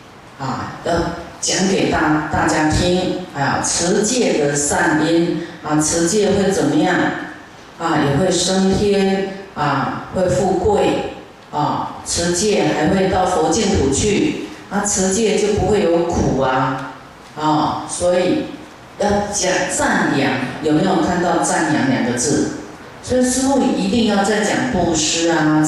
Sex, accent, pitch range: female, native, 155-205 Hz